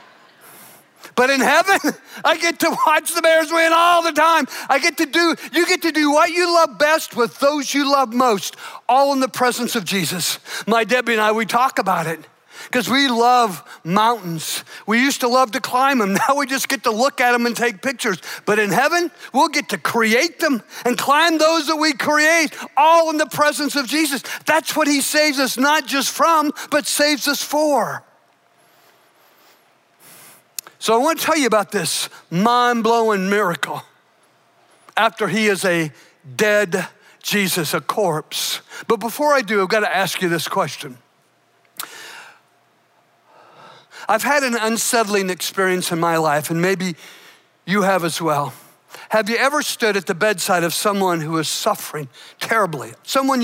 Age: 50-69